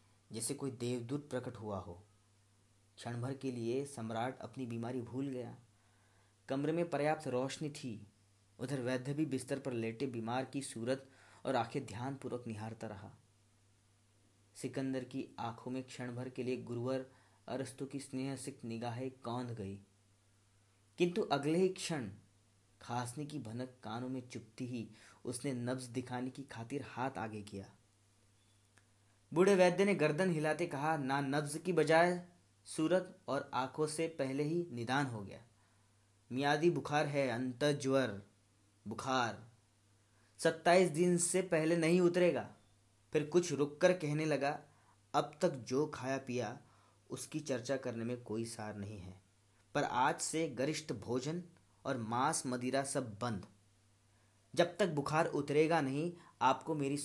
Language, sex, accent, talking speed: Hindi, male, native, 140 wpm